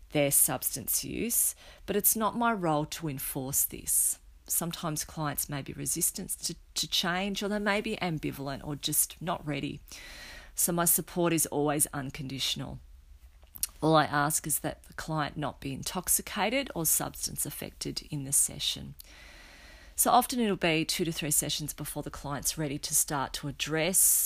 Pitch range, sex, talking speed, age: 140-175 Hz, female, 165 wpm, 40-59